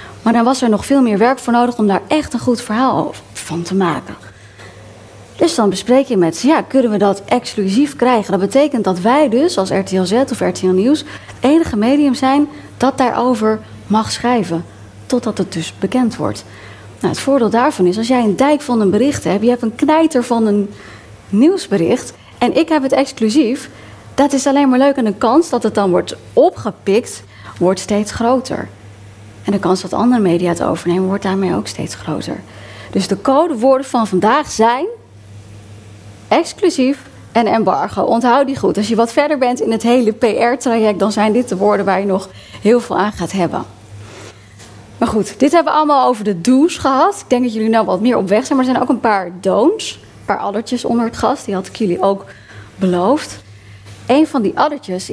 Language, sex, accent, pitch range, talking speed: Dutch, female, Dutch, 170-255 Hz, 200 wpm